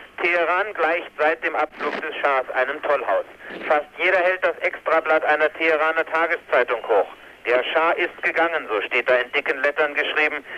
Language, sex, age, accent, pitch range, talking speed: German, male, 60-79, German, 145-165 Hz, 165 wpm